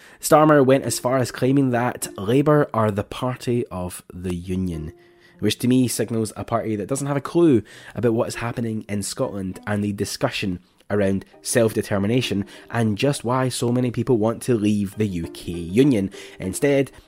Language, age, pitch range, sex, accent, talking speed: English, 10-29, 100-135 Hz, male, British, 170 wpm